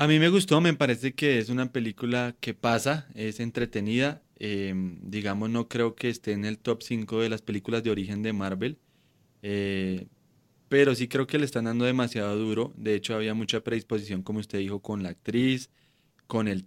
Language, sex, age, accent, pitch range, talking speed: Spanish, male, 20-39, Colombian, 105-125 Hz, 195 wpm